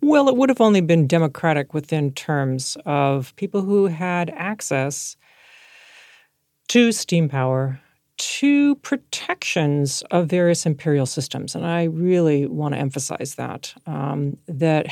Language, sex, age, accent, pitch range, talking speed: English, female, 40-59, American, 145-200 Hz, 130 wpm